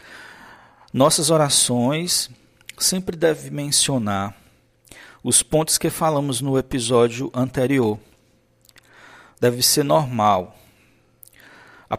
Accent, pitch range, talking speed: Brazilian, 110-135 Hz, 80 wpm